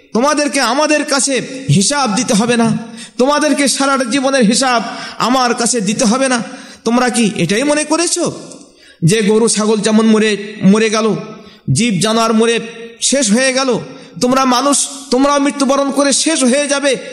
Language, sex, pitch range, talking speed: Bengali, male, 215-270 Hz, 100 wpm